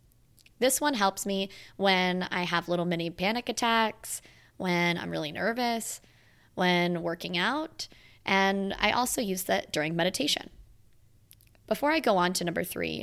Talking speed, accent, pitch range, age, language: 145 wpm, American, 160-205 Hz, 20-39, English